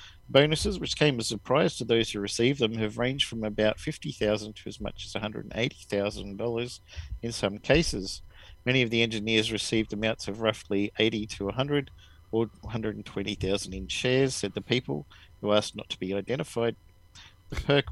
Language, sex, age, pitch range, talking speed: English, male, 50-69, 100-120 Hz, 200 wpm